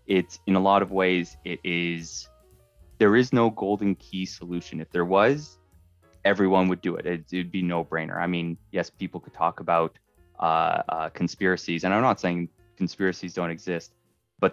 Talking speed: 180 wpm